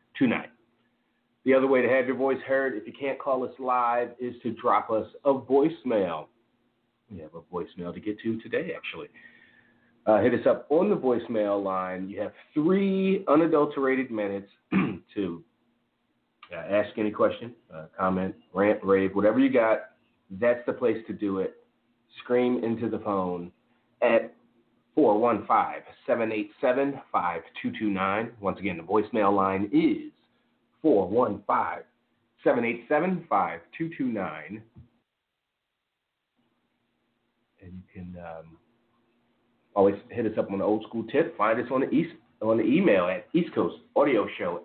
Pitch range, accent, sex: 100-130 Hz, American, male